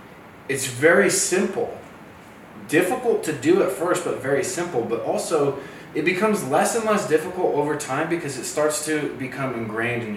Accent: American